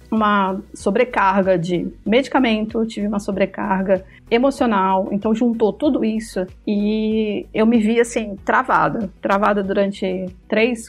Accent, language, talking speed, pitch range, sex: Brazilian, Portuguese, 115 wpm, 200-235 Hz, female